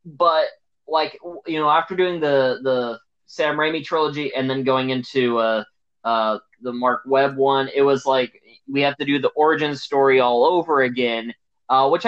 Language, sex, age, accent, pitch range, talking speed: English, male, 20-39, American, 120-155 Hz, 180 wpm